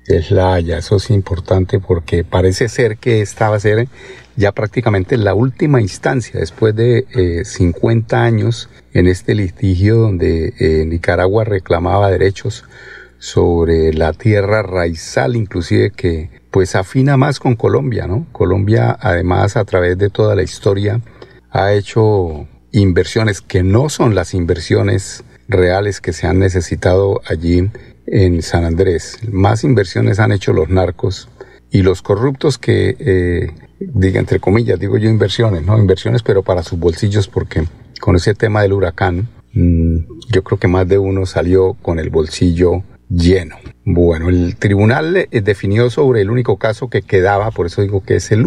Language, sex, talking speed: Spanish, male, 155 wpm